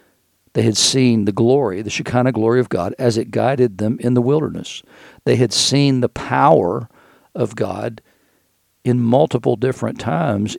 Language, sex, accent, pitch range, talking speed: English, male, American, 105-125 Hz, 160 wpm